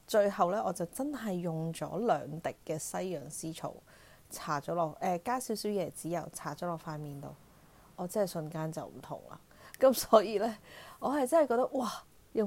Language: Chinese